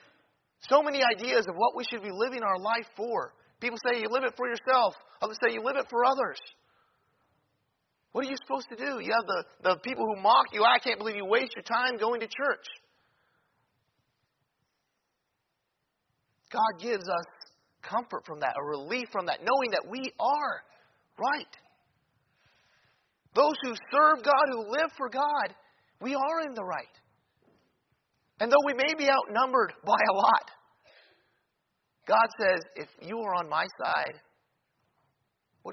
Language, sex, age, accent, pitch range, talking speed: English, male, 40-59, American, 210-270 Hz, 160 wpm